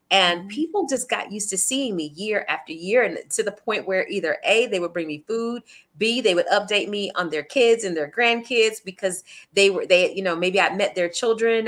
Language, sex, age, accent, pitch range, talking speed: English, female, 30-49, American, 170-220 Hz, 230 wpm